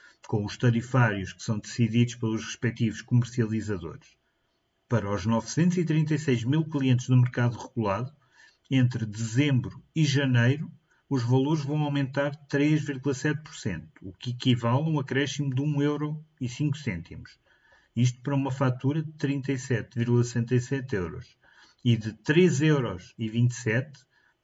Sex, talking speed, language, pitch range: male, 110 wpm, Portuguese, 120-150 Hz